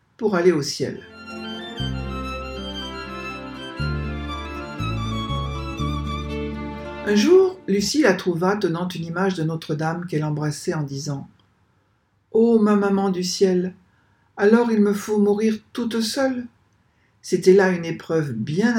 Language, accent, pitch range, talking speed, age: French, French, 115-185 Hz, 110 wpm, 60-79